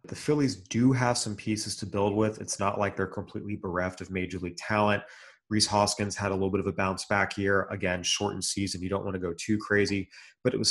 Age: 30-49